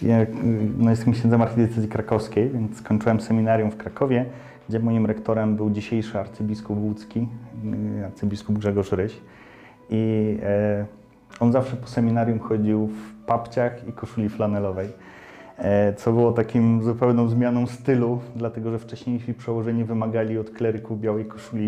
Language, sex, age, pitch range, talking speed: Polish, male, 30-49, 105-115 Hz, 135 wpm